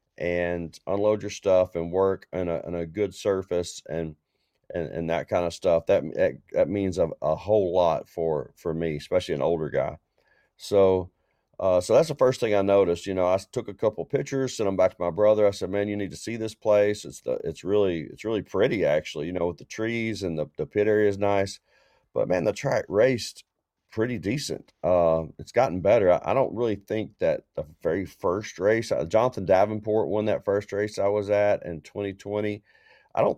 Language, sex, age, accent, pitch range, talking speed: English, male, 40-59, American, 90-110 Hz, 210 wpm